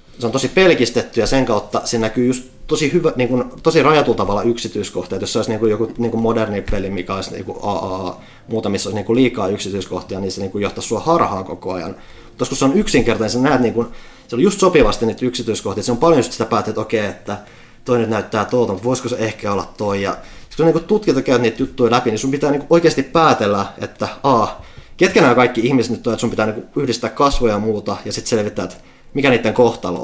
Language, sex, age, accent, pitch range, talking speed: Finnish, male, 30-49, native, 100-130 Hz, 225 wpm